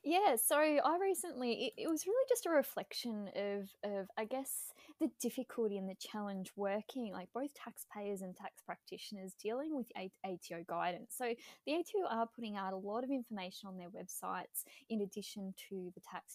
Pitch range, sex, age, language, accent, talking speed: 195-270 Hz, female, 20-39, English, Australian, 180 wpm